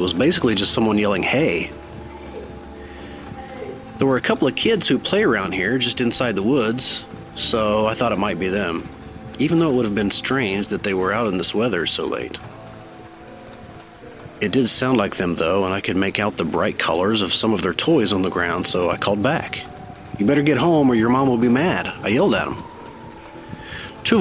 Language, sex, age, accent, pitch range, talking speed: English, male, 30-49, American, 100-140 Hz, 210 wpm